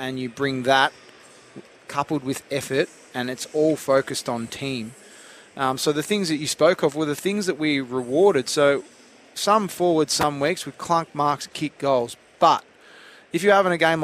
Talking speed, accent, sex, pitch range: 185 wpm, Australian, male, 140-165 Hz